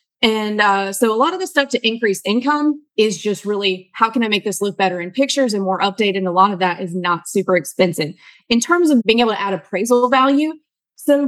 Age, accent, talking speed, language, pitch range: 20-39, American, 240 wpm, English, 190-235 Hz